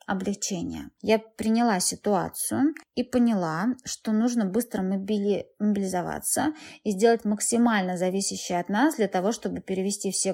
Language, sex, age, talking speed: Russian, female, 20-39, 130 wpm